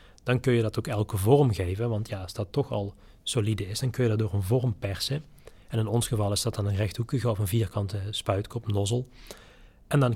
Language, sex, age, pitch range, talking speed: Dutch, male, 40-59, 100-120 Hz, 235 wpm